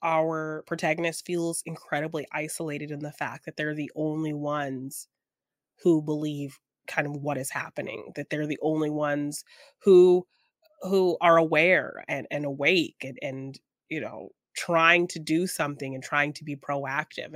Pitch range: 145-170 Hz